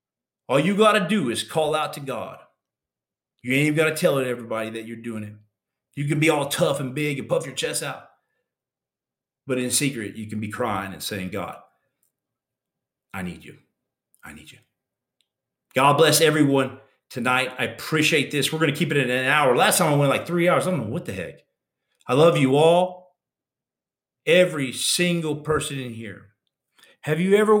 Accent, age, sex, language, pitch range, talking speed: American, 40-59, male, English, 125-160 Hz, 195 wpm